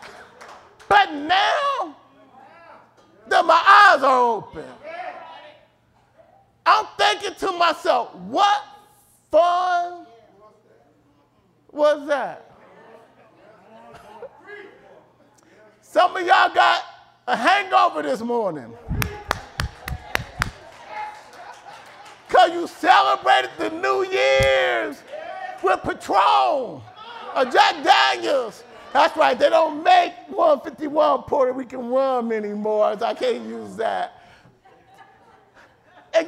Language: English